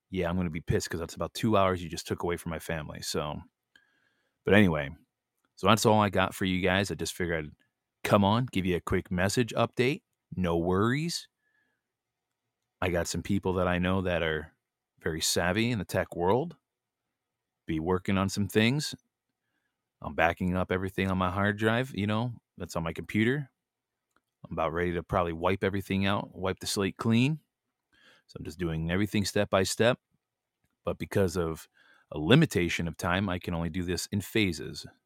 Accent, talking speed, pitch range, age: American, 190 wpm, 90-110 Hz, 30-49